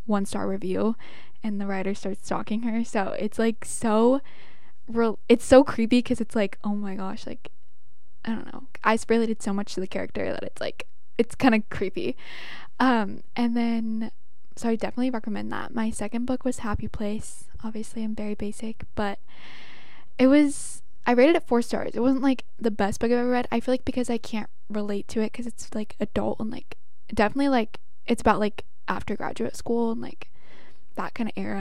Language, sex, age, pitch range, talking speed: English, female, 10-29, 210-245 Hz, 200 wpm